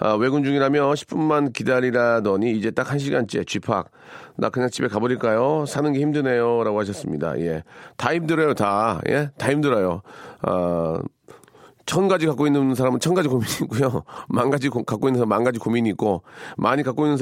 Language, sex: Korean, male